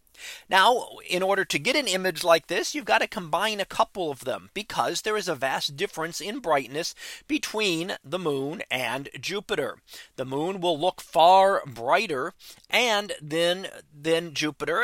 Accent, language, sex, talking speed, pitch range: American, English, male, 160 wpm, 155-205 Hz